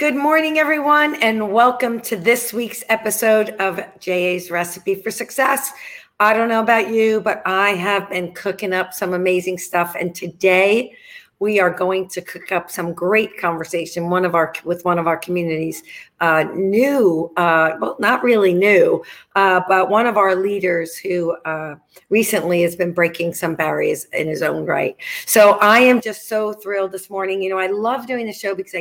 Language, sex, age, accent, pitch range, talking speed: English, female, 50-69, American, 180-220 Hz, 185 wpm